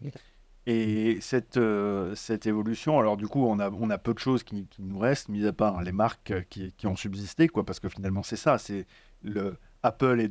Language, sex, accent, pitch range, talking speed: French, male, French, 100-125 Hz, 220 wpm